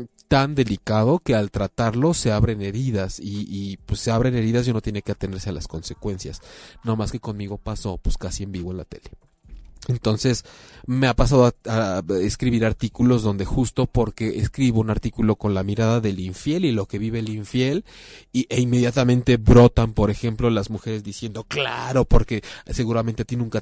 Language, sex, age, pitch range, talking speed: Spanish, male, 30-49, 105-125 Hz, 185 wpm